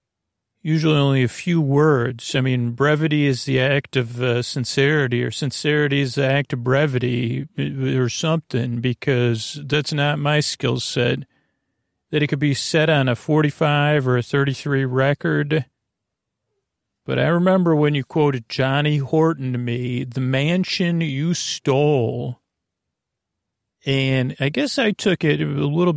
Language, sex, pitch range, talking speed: English, male, 120-150 Hz, 145 wpm